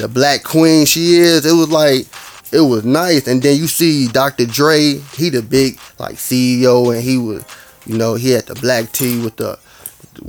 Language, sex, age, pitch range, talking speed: English, male, 20-39, 125-165 Hz, 200 wpm